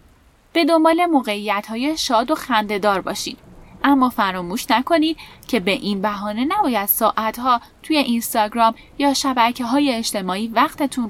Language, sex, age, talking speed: Persian, female, 10-29, 130 wpm